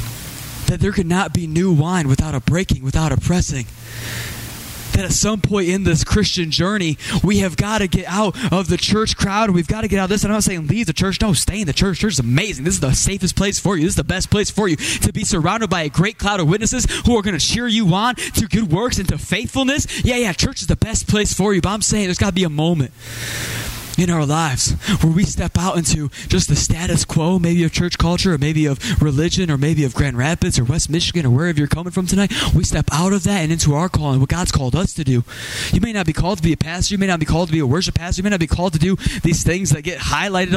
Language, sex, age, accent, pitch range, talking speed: English, male, 20-39, American, 145-195 Hz, 275 wpm